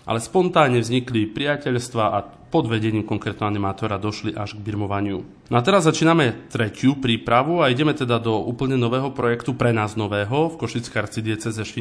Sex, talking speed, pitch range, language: male, 165 wpm, 105-120 Hz, Slovak